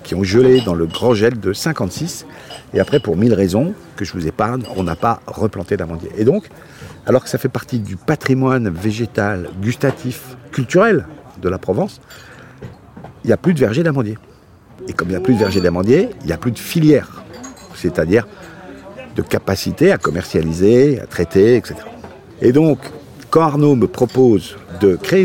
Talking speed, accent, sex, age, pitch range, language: 180 wpm, French, male, 50-69, 105-145 Hz, French